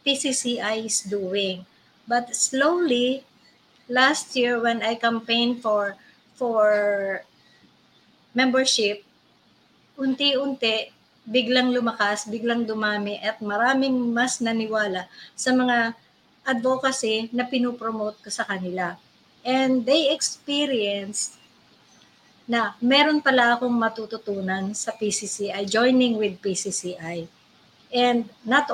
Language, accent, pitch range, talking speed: English, Filipino, 215-260 Hz, 95 wpm